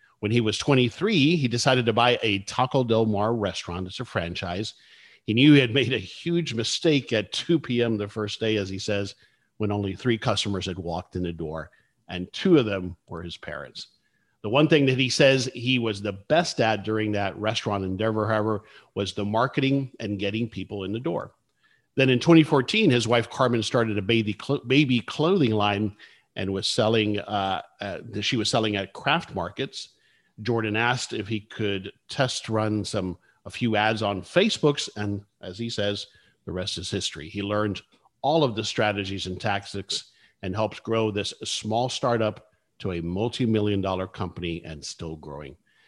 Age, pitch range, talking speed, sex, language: 50-69, 100-120 Hz, 180 wpm, male, English